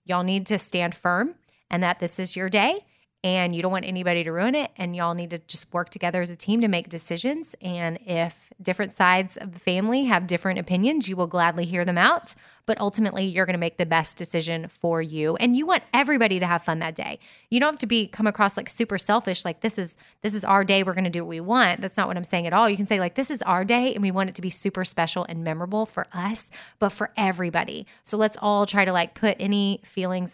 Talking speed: 260 wpm